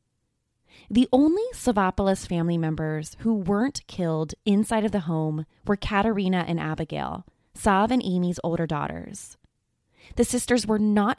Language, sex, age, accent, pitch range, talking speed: English, female, 20-39, American, 165-225 Hz, 135 wpm